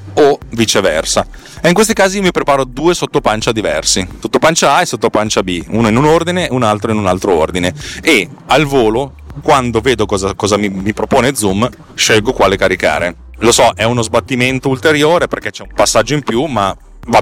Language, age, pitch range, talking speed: Italian, 30-49, 100-130 Hz, 190 wpm